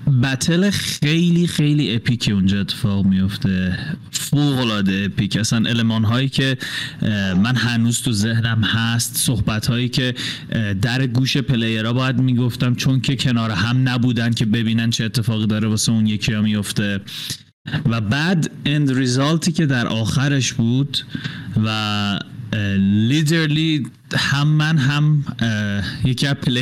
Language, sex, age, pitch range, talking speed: Persian, male, 30-49, 110-135 Hz, 125 wpm